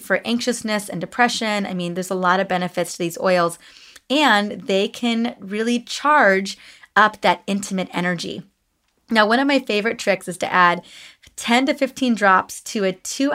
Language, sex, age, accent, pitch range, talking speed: English, female, 20-39, American, 185-240 Hz, 175 wpm